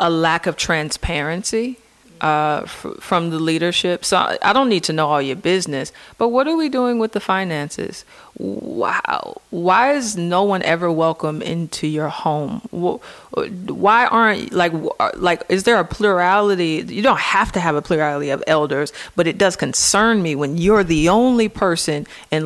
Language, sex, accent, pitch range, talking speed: English, female, American, 155-185 Hz, 175 wpm